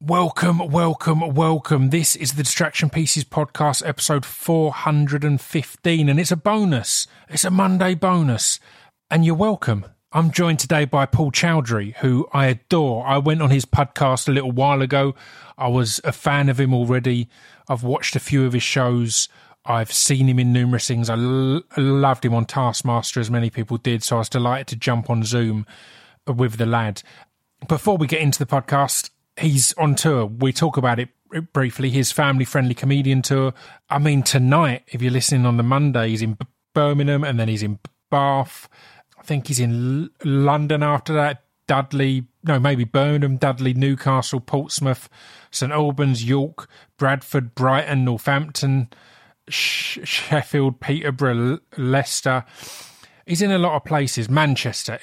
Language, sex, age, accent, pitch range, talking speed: English, male, 30-49, British, 125-150 Hz, 160 wpm